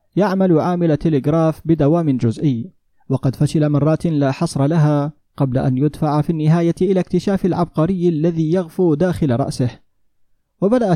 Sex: male